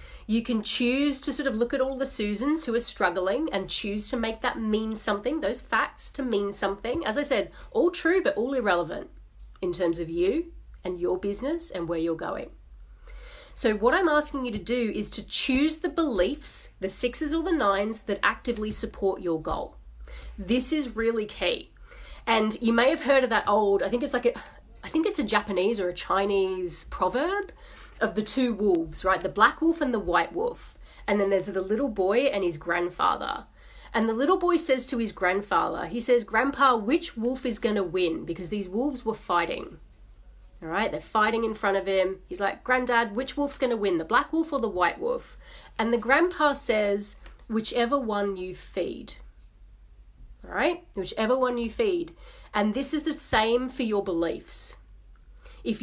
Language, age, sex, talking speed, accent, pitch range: English, 30-49, female, 195 wpm, Australian, 200-275 Hz